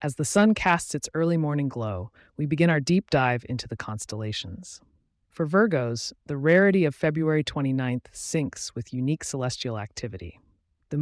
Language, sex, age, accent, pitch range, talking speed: English, female, 30-49, American, 115-155 Hz, 160 wpm